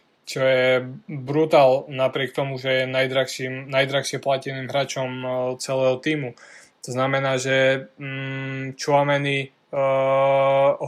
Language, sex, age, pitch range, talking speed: Slovak, male, 20-39, 130-145 Hz, 105 wpm